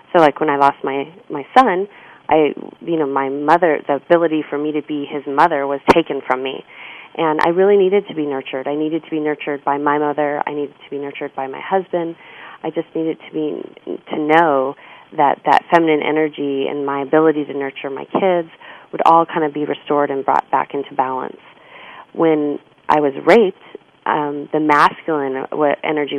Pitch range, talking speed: 140-160 Hz, 195 wpm